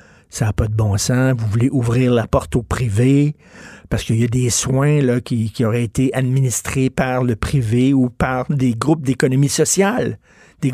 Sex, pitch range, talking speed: male, 120-160 Hz, 195 wpm